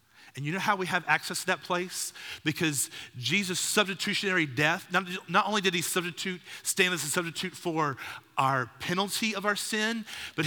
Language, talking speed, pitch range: English, 180 wpm, 115-165 Hz